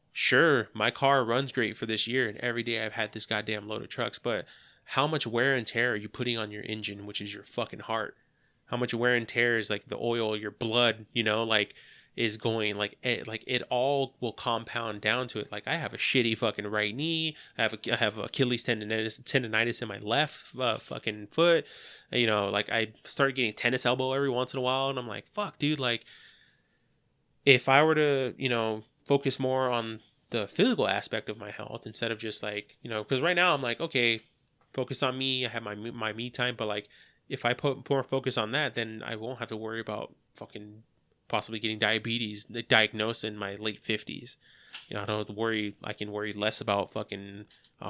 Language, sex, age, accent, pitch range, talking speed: English, male, 20-39, American, 105-130 Hz, 220 wpm